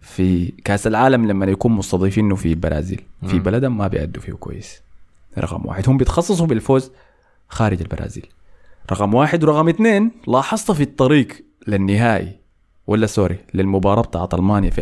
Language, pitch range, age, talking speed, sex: Arabic, 95-135 Hz, 20-39, 140 wpm, male